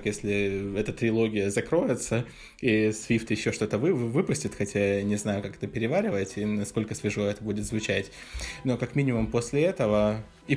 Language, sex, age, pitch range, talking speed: Russian, male, 20-39, 105-125 Hz, 160 wpm